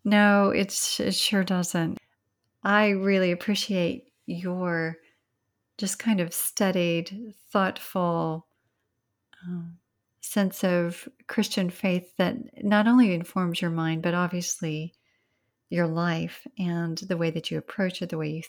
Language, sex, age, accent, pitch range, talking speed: English, female, 40-59, American, 165-190 Hz, 125 wpm